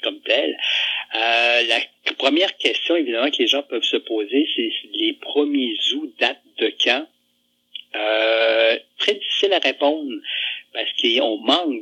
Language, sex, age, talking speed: French, male, 60-79, 140 wpm